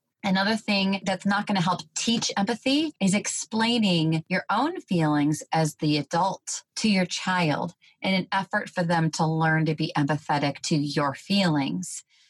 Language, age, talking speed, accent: English, 30-49, 160 wpm, American